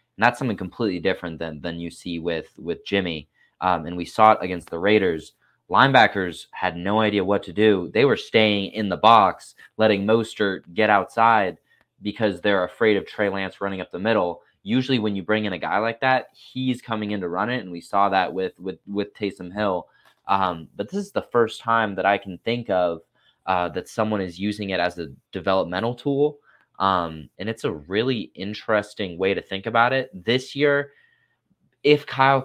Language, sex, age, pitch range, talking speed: English, male, 20-39, 90-110 Hz, 200 wpm